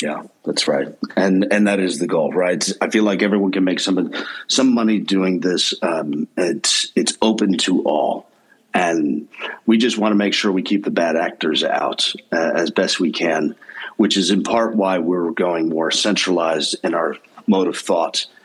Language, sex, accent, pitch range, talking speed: English, male, American, 95-115 Hz, 190 wpm